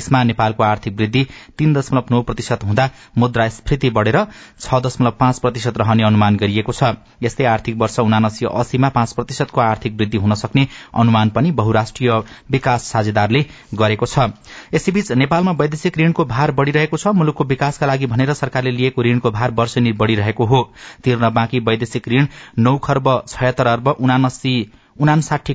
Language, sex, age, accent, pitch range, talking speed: English, male, 30-49, Indian, 110-130 Hz, 95 wpm